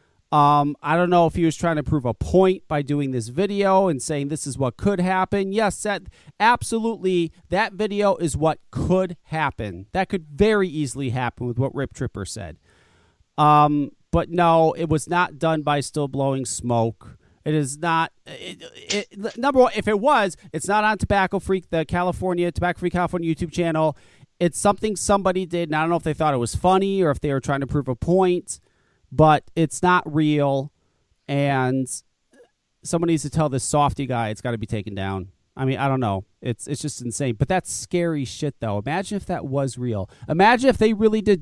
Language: English